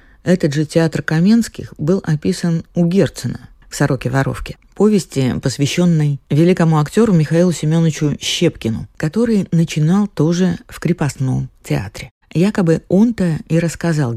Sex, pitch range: female, 135-175 Hz